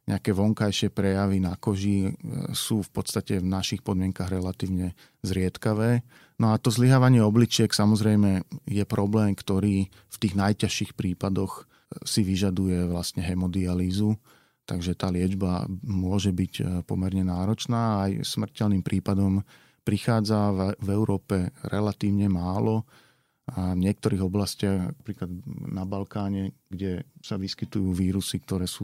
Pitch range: 95-110 Hz